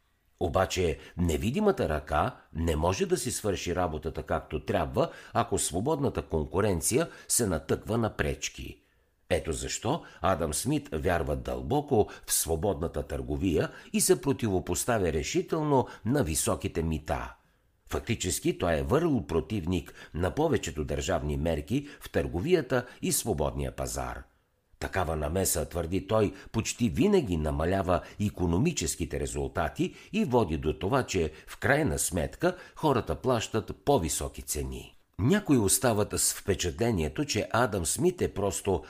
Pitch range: 75-110 Hz